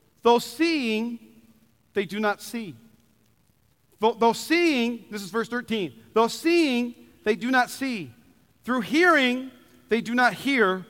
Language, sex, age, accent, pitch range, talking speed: English, male, 40-59, American, 210-275 Hz, 130 wpm